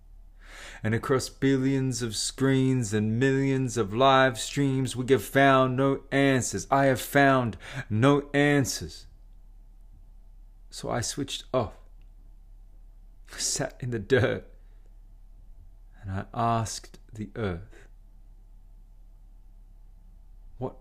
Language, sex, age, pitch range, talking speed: English, male, 30-49, 95-135 Hz, 100 wpm